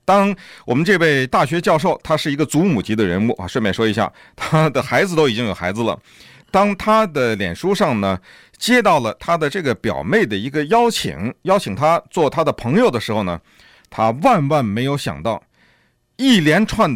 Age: 50-69